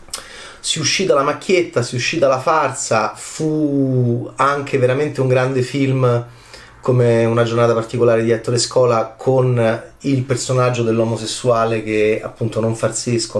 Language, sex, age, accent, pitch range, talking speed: Italian, male, 30-49, native, 115-130 Hz, 140 wpm